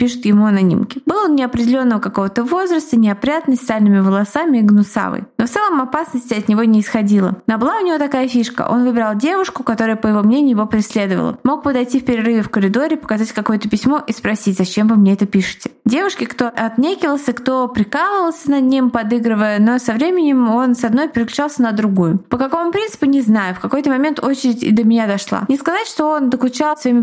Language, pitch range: Russian, 220-270 Hz